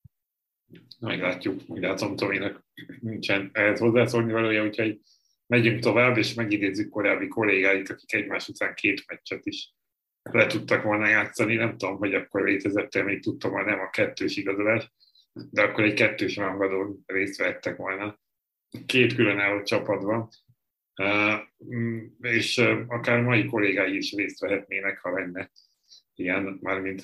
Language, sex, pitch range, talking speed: Hungarian, male, 95-115 Hz, 130 wpm